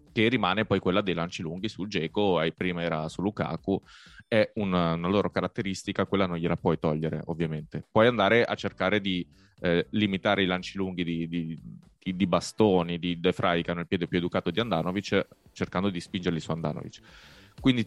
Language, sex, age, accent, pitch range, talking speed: Italian, male, 20-39, native, 85-105 Hz, 190 wpm